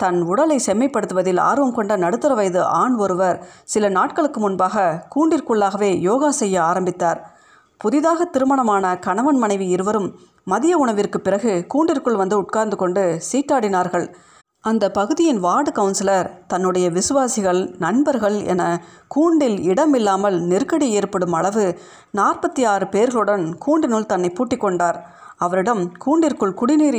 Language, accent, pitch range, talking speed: Tamil, native, 185-265 Hz, 110 wpm